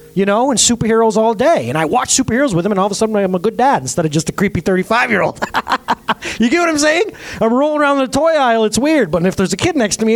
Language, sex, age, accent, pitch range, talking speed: English, male, 30-49, American, 125-205 Hz, 285 wpm